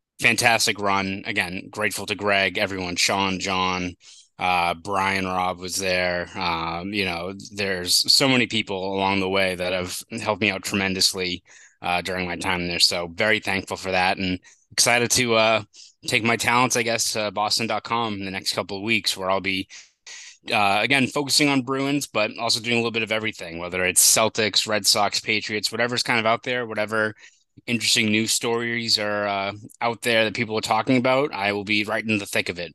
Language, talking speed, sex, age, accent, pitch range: English, 195 wpm, male, 20-39, American, 95-115 Hz